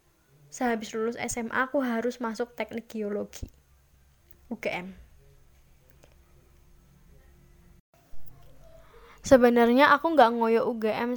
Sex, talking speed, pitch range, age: female, 75 wpm, 200-250 Hz, 10-29